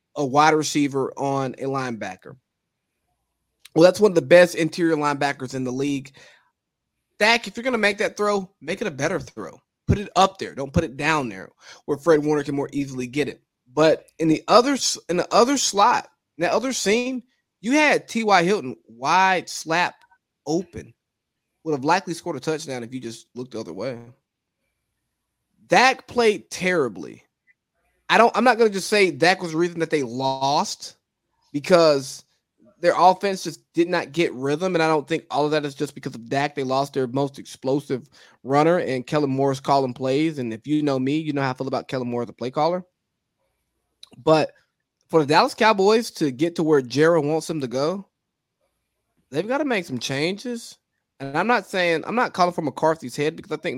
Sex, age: male, 20-39